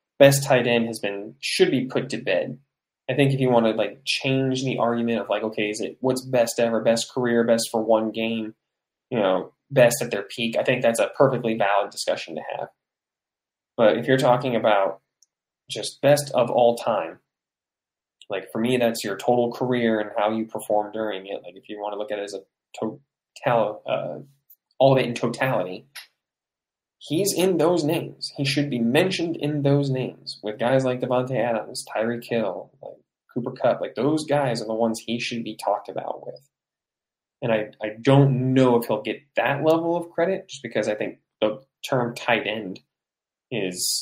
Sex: male